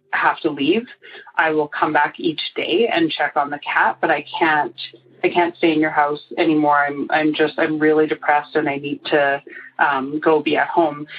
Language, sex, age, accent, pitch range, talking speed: English, female, 30-49, American, 150-200 Hz, 210 wpm